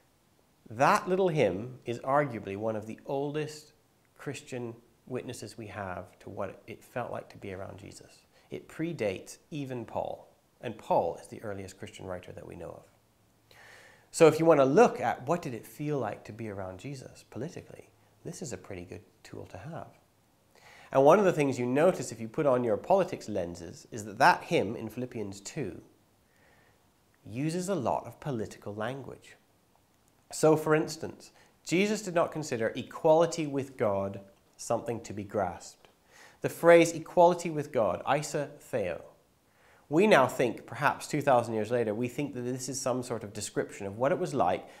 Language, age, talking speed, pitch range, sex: English, 30-49, 175 wpm, 105-150 Hz, male